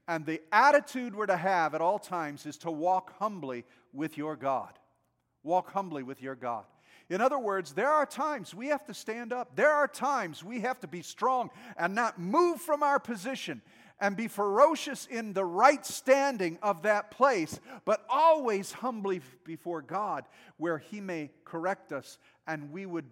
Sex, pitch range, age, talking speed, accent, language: male, 145-210 Hz, 50-69, 180 wpm, American, English